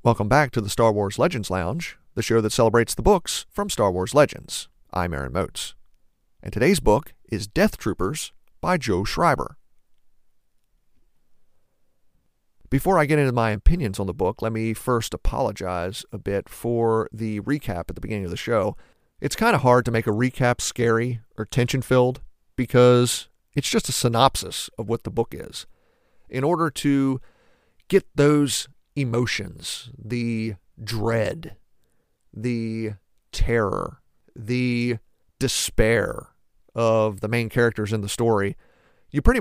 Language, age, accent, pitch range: English, 40-59, American, 105-130 Hz